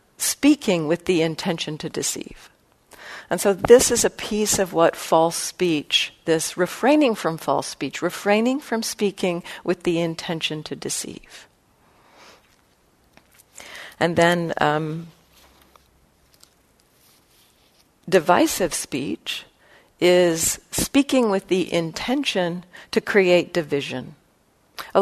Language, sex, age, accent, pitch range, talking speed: English, female, 50-69, American, 155-190 Hz, 105 wpm